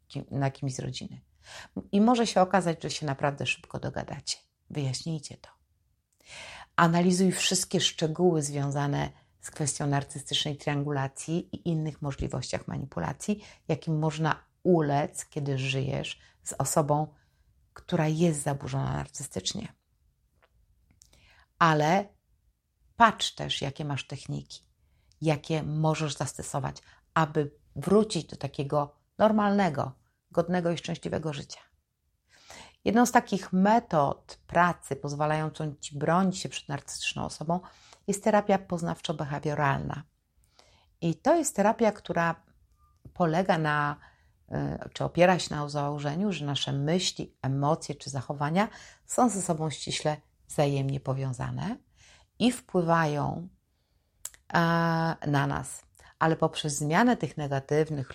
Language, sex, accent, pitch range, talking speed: Polish, female, native, 140-175 Hz, 105 wpm